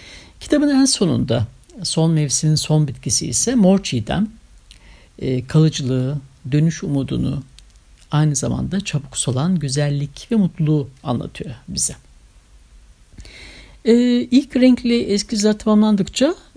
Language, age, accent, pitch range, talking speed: Turkish, 60-79, native, 135-200 Hz, 95 wpm